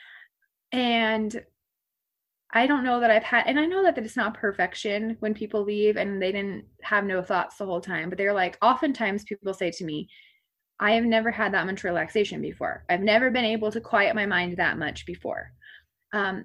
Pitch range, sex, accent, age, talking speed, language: 185-230 Hz, female, American, 20-39, 195 wpm, English